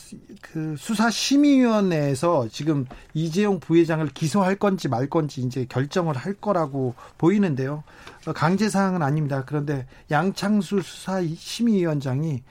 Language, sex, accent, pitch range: Korean, male, native, 145-200 Hz